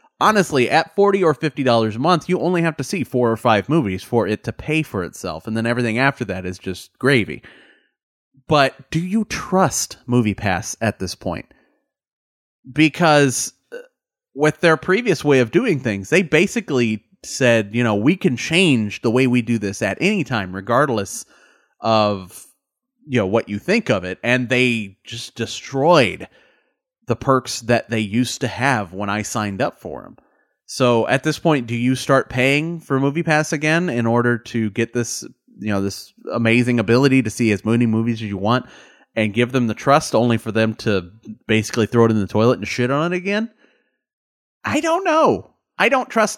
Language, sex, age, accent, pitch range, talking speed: English, male, 30-49, American, 110-155 Hz, 185 wpm